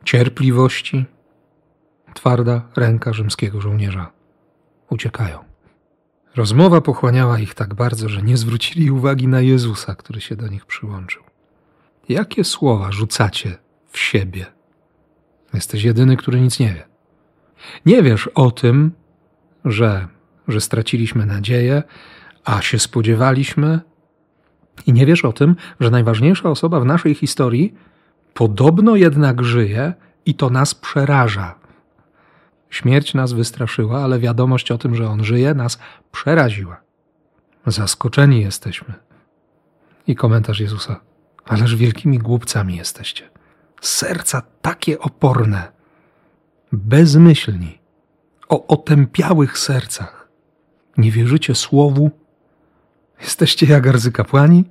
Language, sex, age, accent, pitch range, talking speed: Polish, male, 40-59, native, 115-155 Hz, 105 wpm